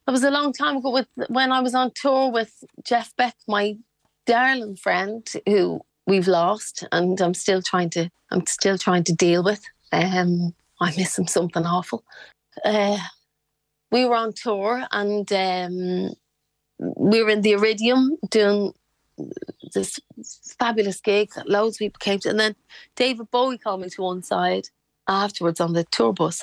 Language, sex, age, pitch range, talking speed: English, female, 30-49, 185-225 Hz, 165 wpm